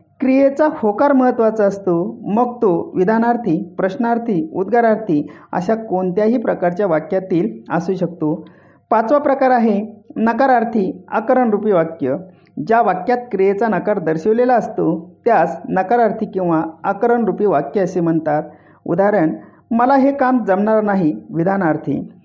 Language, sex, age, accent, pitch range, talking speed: Marathi, male, 40-59, native, 175-235 Hz, 115 wpm